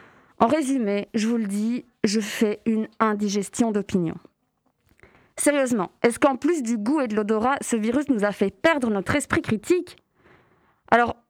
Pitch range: 215-265 Hz